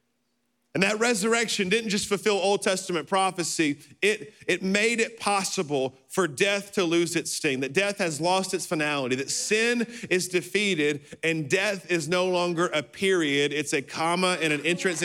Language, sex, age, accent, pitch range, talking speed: English, male, 40-59, American, 170-220 Hz, 170 wpm